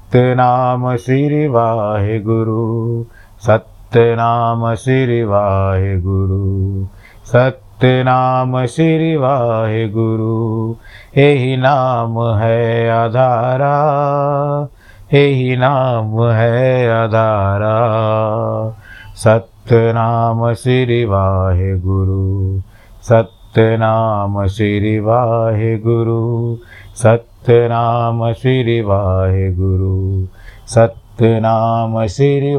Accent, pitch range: native, 100-115 Hz